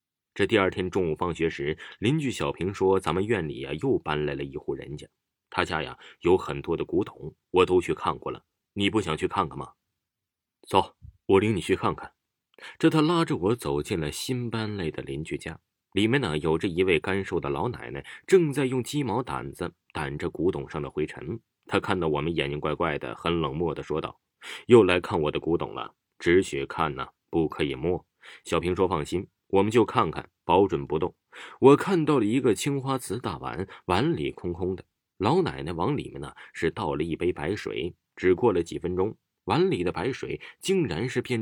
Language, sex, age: Chinese, male, 20-39